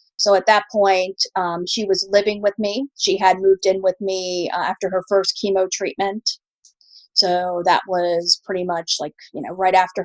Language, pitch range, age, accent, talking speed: English, 180-200 Hz, 30-49, American, 190 wpm